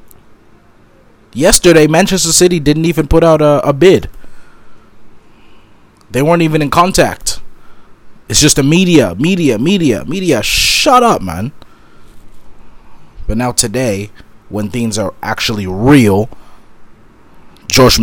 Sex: male